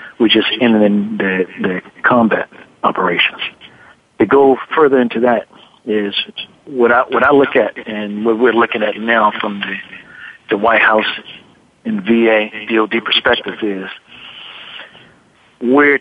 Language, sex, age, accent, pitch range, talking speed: English, male, 60-79, American, 105-120 Hz, 135 wpm